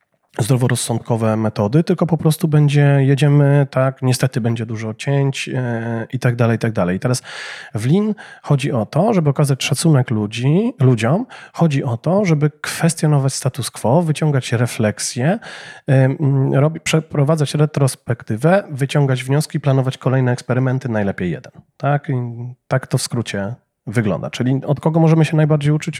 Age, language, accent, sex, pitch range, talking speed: 40-59, Polish, native, male, 130-160 Hz, 150 wpm